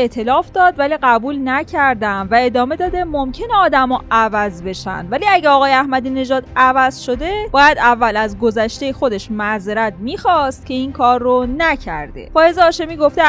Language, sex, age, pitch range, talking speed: Persian, female, 10-29, 225-300 Hz, 155 wpm